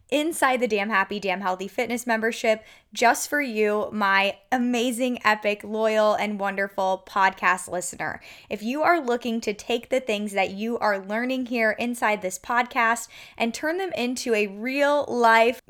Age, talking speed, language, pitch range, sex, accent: 20-39, 155 wpm, English, 210-255 Hz, female, American